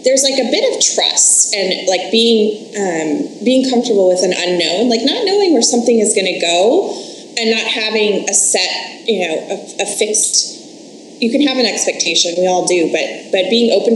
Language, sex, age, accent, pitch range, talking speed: English, female, 20-39, American, 195-265 Hz, 195 wpm